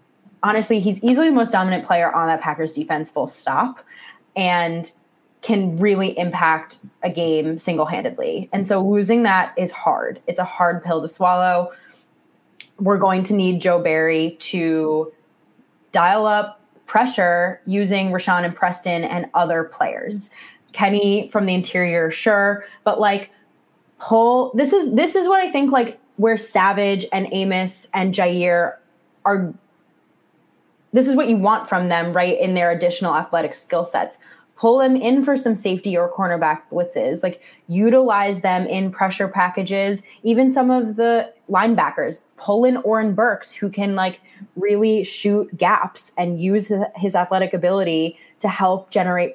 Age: 20-39